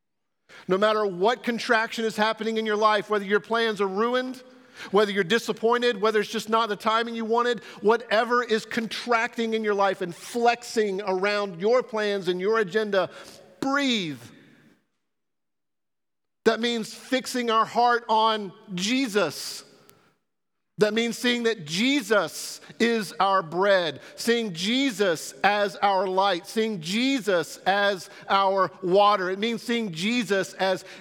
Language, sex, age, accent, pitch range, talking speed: English, male, 50-69, American, 195-230 Hz, 135 wpm